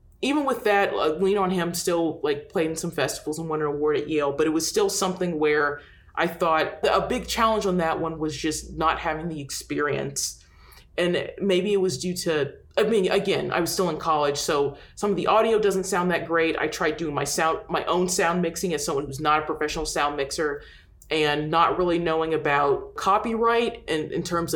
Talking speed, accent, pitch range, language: 215 wpm, American, 155-190 Hz, English